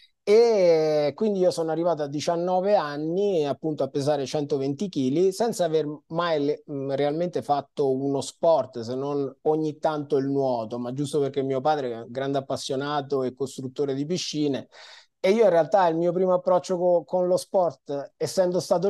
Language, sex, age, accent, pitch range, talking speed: Italian, male, 30-49, native, 135-175 Hz, 165 wpm